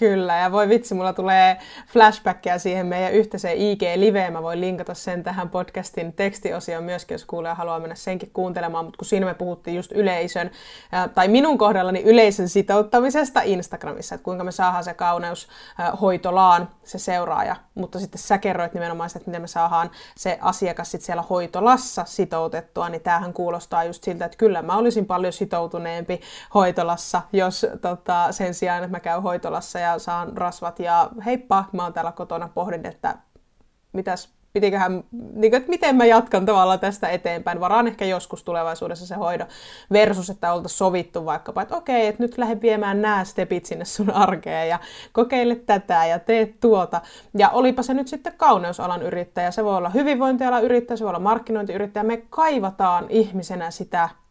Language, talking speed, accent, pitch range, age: Finnish, 170 wpm, native, 175-215 Hz, 20-39